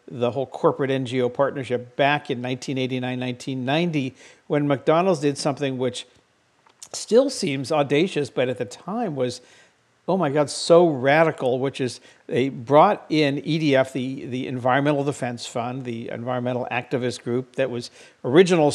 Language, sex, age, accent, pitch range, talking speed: English, male, 50-69, American, 125-155 Hz, 145 wpm